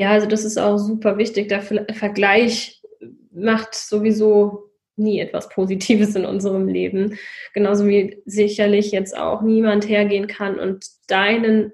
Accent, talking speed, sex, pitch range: German, 140 wpm, female, 195-220 Hz